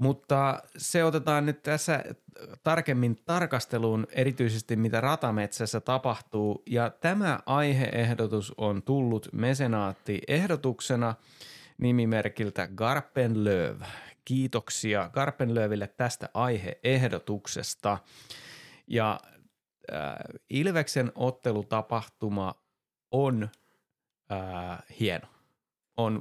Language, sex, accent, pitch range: Finnish, male, native, 105-130 Hz